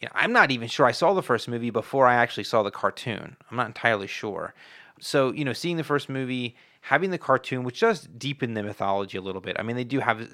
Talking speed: 245 wpm